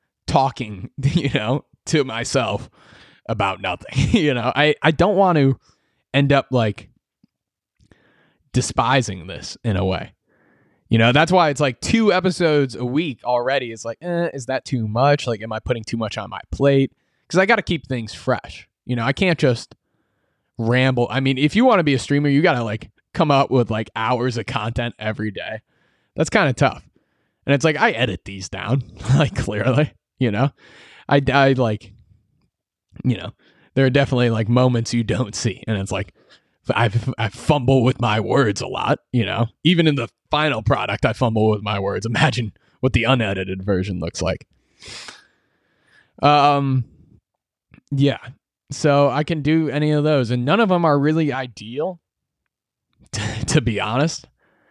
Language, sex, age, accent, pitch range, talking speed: English, male, 20-39, American, 115-145 Hz, 180 wpm